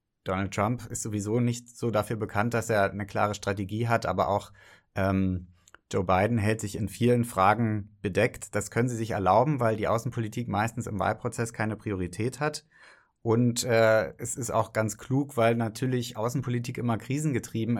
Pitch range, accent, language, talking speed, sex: 100-120 Hz, German, German, 170 wpm, male